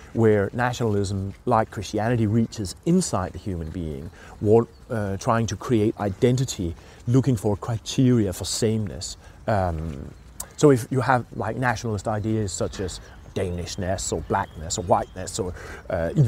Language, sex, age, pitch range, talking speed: English, male, 30-49, 90-115 Hz, 135 wpm